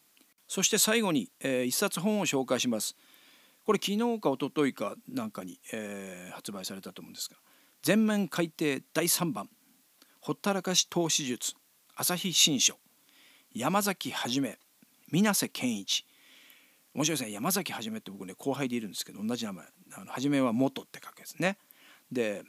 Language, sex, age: Japanese, male, 40-59